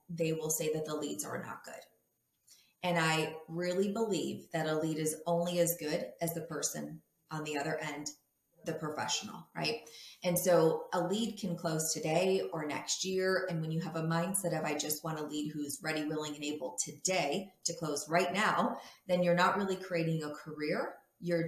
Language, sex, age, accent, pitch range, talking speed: English, female, 30-49, American, 155-175 Hz, 195 wpm